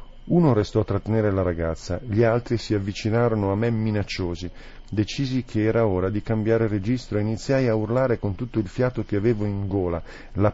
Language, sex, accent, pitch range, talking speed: Italian, male, native, 95-145 Hz, 190 wpm